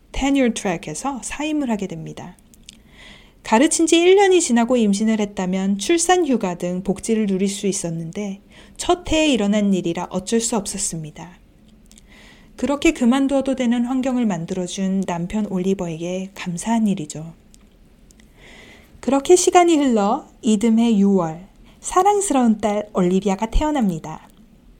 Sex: female